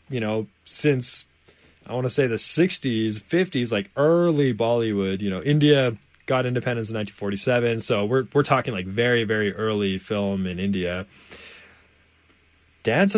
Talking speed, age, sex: 145 wpm, 20-39, male